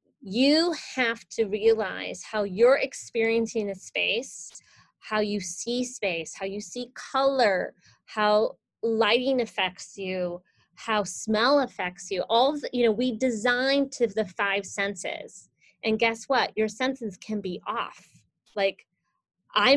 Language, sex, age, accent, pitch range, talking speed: English, female, 20-39, American, 190-245 Hz, 135 wpm